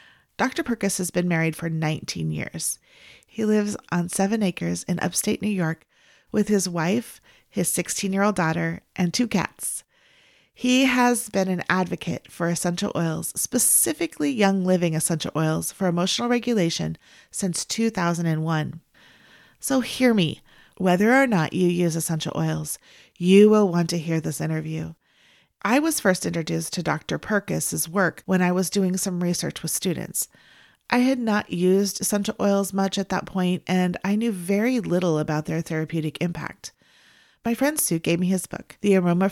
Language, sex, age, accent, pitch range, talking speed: English, female, 30-49, American, 165-205 Hz, 160 wpm